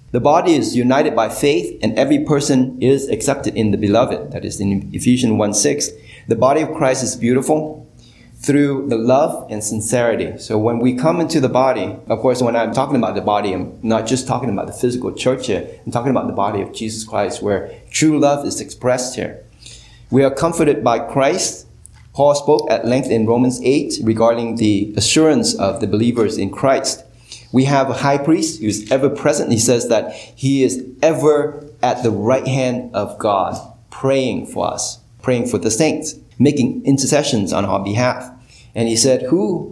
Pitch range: 115-145 Hz